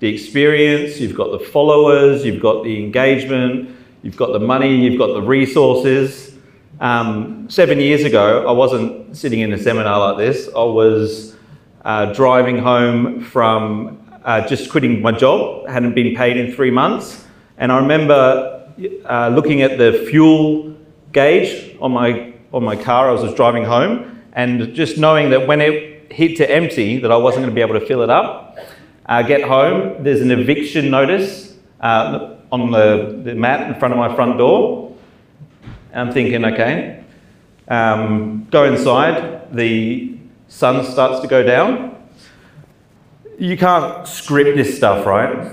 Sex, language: male, English